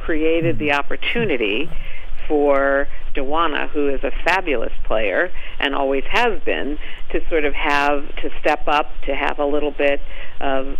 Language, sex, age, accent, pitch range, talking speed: English, female, 50-69, American, 135-150 Hz, 150 wpm